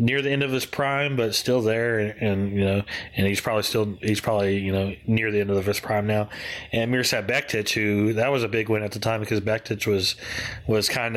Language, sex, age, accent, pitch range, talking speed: English, male, 30-49, American, 105-115 Hz, 245 wpm